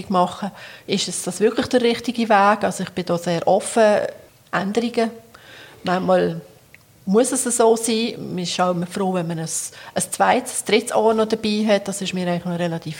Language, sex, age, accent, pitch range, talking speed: German, female, 40-59, Austrian, 185-220 Hz, 185 wpm